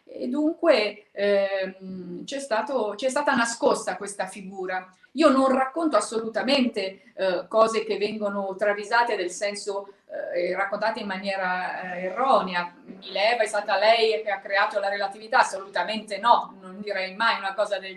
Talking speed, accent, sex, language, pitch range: 145 wpm, native, female, Italian, 195-235 Hz